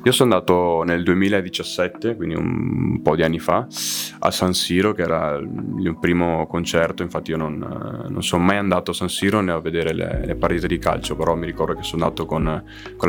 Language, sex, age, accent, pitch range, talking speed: Italian, male, 20-39, native, 80-90 Hz, 210 wpm